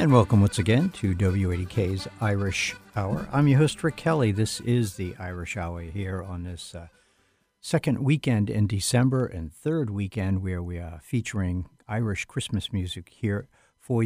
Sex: male